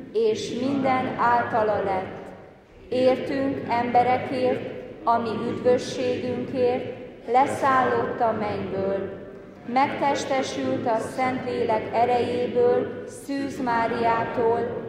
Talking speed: 70 wpm